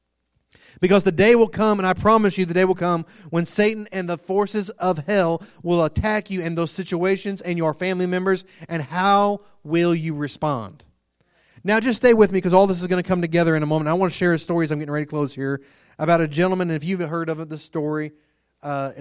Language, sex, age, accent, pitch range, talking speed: English, male, 30-49, American, 150-185 Hz, 235 wpm